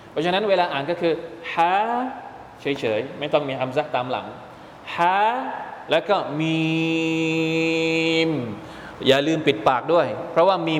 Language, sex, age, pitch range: Thai, male, 20-39, 140-165 Hz